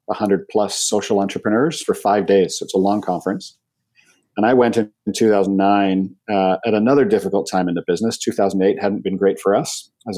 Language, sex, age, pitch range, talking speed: English, male, 40-59, 95-110 Hz, 195 wpm